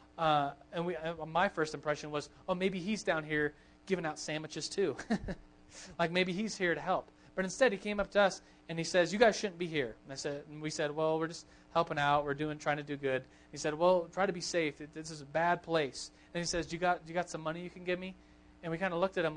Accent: American